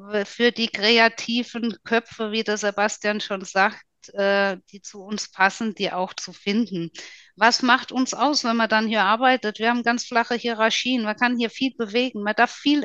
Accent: German